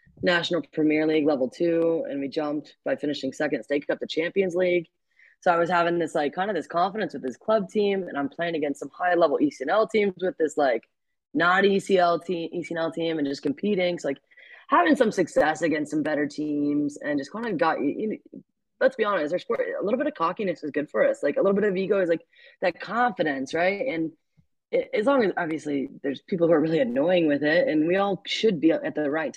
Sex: female